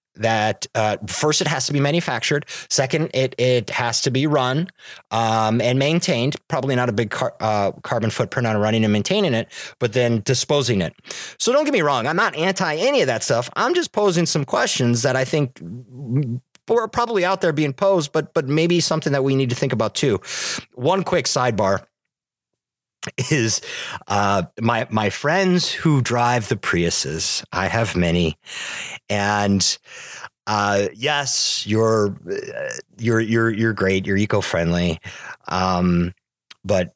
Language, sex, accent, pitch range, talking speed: English, male, American, 105-145 Hz, 160 wpm